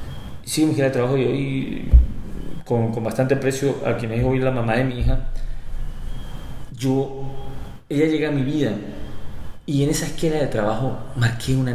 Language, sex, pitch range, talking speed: Spanish, male, 105-135 Hz, 175 wpm